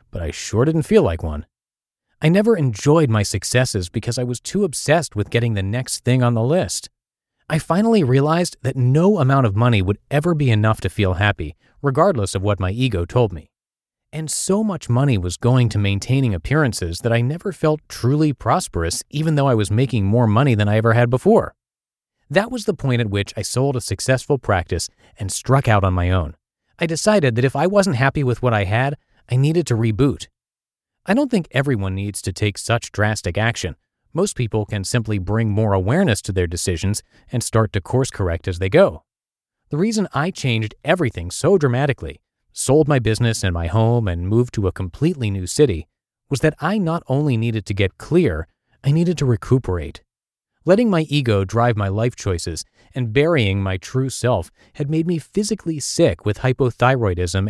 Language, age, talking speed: English, 30-49, 195 wpm